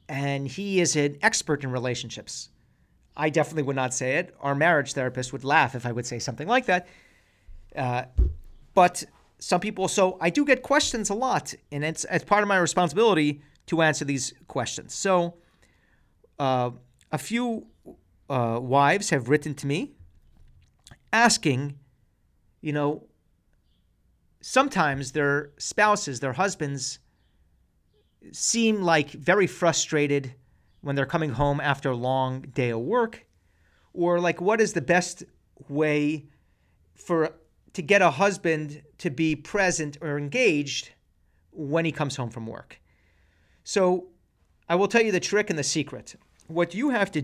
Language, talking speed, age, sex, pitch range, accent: English, 145 wpm, 40-59, male, 125-180 Hz, American